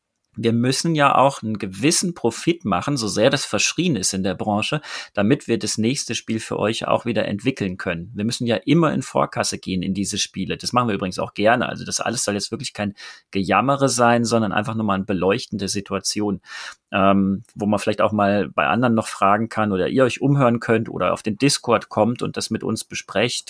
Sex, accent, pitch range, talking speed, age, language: male, German, 100-120 Hz, 215 wpm, 30-49, German